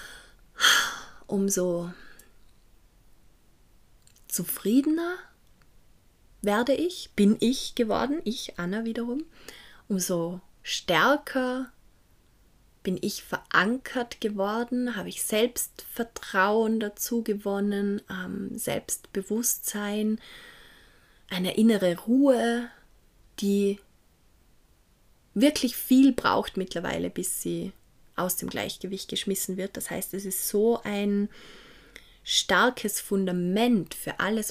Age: 20-39